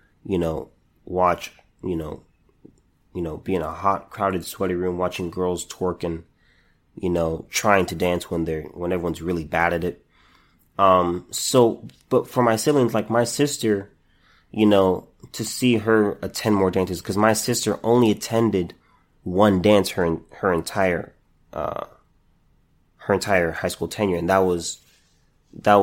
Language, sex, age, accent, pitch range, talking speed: English, male, 30-49, American, 90-115 Hz, 155 wpm